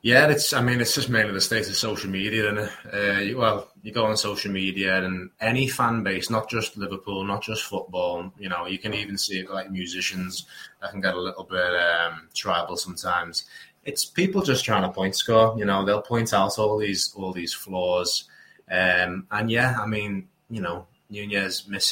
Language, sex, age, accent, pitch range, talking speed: English, male, 20-39, British, 95-115 Hz, 205 wpm